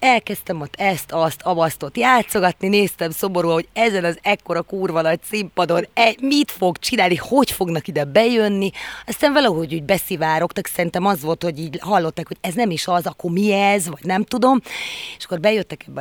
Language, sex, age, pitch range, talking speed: Hungarian, female, 30-49, 165-205 Hz, 175 wpm